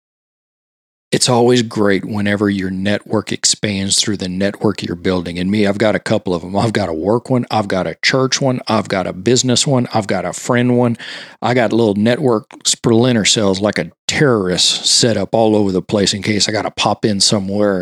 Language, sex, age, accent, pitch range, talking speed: English, male, 40-59, American, 95-115 Hz, 210 wpm